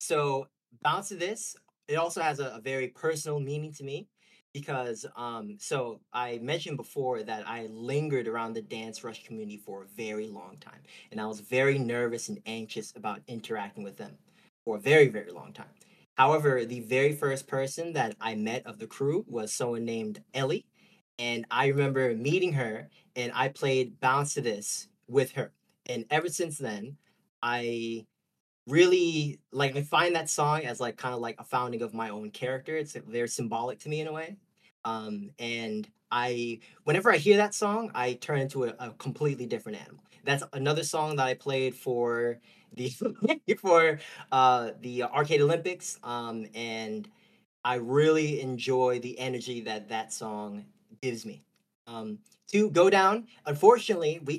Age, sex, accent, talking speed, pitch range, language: 20-39, male, American, 170 wpm, 120-155 Hz, English